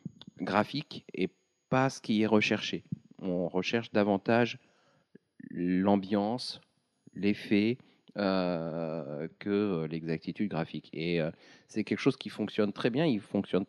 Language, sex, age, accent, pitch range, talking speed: French, male, 40-59, French, 85-110 Hz, 120 wpm